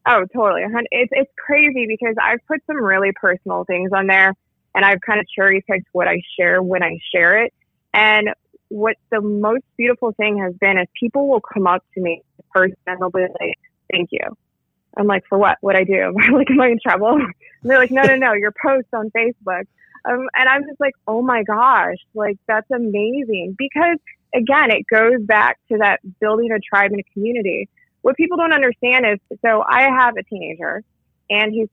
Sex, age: female, 20-39